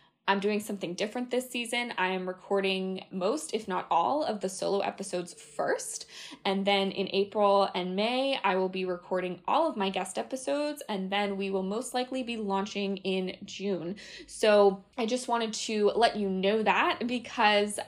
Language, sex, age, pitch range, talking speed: English, female, 20-39, 185-230 Hz, 180 wpm